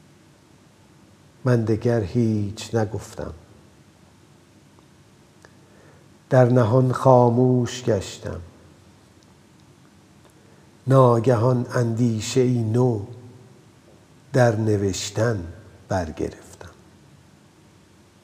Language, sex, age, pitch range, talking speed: Persian, male, 50-69, 110-125 Hz, 45 wpm